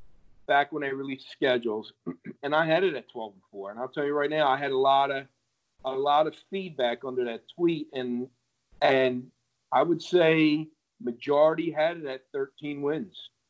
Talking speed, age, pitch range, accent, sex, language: 185 wpm, 50-69, 120-155 Hz, American, male, English